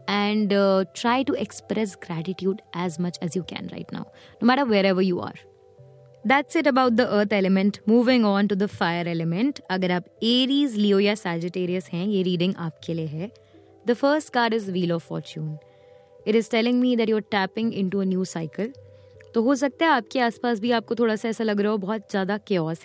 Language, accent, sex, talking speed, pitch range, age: Hindi, native, female, 205 wpm, 185-245 Hz, 20-39